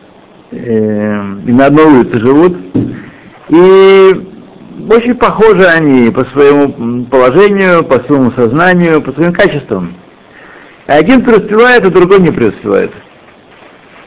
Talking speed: 100 wpm